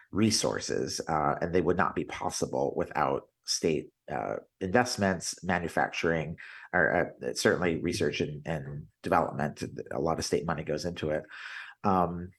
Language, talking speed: English, 140 wpm